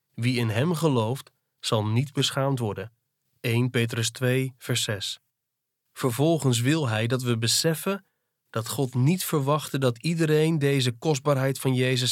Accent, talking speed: Dutch, 145 wpm